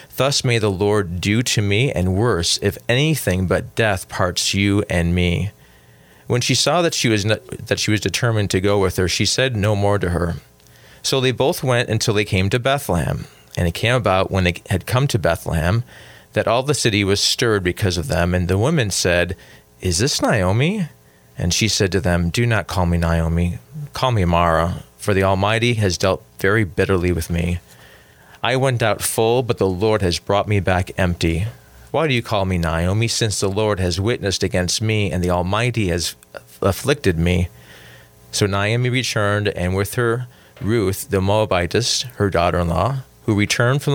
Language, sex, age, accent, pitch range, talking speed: English, male, 30-49, American, 85-110 Hz, 190 wpm